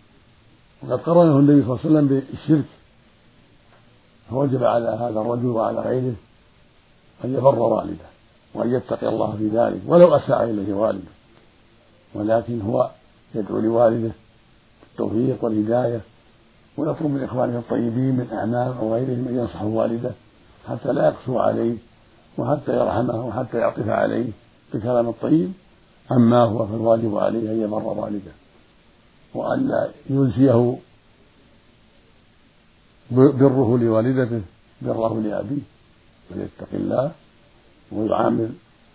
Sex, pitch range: male, 110-135 Hz